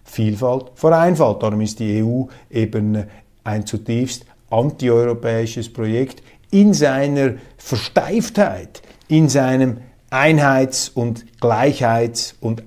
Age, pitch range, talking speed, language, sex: 50-69, 110-140 Hz, 100 wpm, German, male